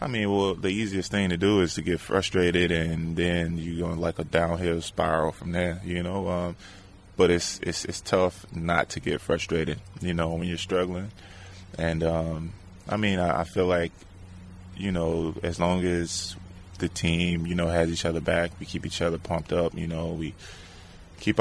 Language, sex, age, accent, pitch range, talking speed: English, male, 20-39, American, 85-90 Hz, 195 wpm